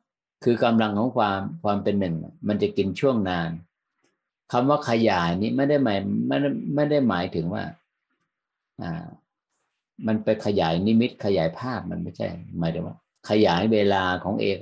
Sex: male